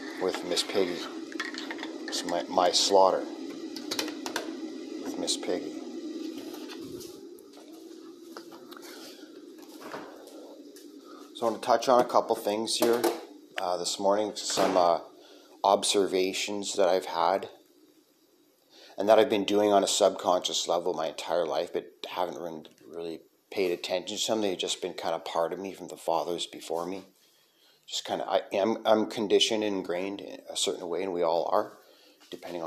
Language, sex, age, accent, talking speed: English, male, 30-49, American, 145 wpm